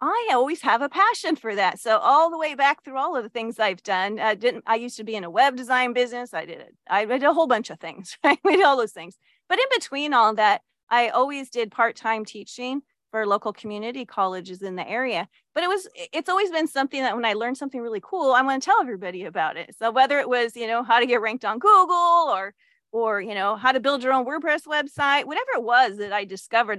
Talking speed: 250 wpm